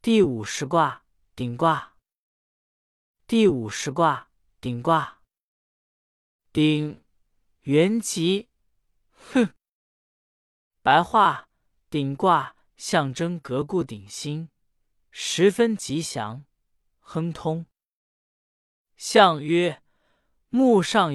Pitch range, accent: 130-205 Hz, native